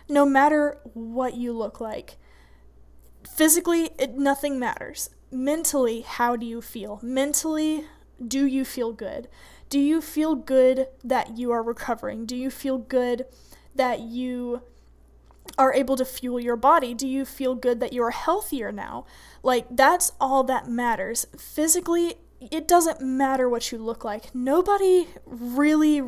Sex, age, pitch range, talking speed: female, 10-29, 240-300 Hz, 145 wpm